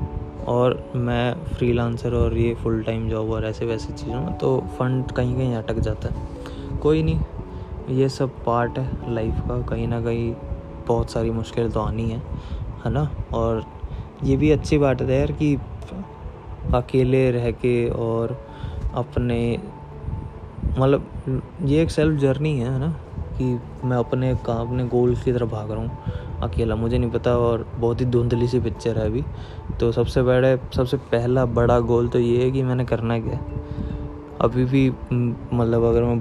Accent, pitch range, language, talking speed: native, 110-125 Hz, Hindi, 165 wpm